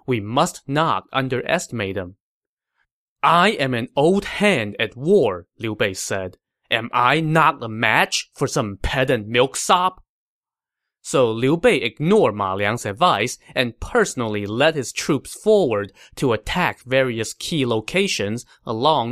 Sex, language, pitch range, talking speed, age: male, English, 110-160 Hz, 135 wpm, 20-39